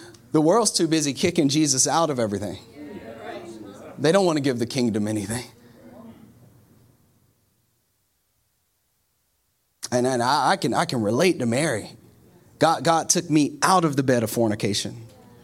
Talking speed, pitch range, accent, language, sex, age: 145 wpm, 115-160 Hz, American, English, male, 30-49